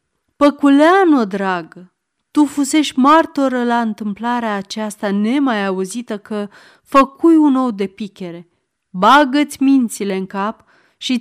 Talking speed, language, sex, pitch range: 110 wpm, Romanian, female, 195-290 Hz